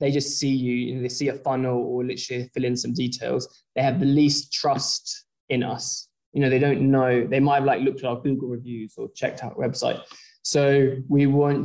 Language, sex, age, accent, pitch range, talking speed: English, male, 20-39, British, 125-145 Hz, 220 wpm